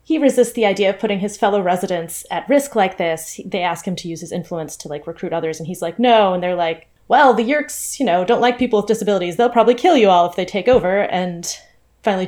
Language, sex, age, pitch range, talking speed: English, female, 20-39, 170-215 Hz, 255 wpm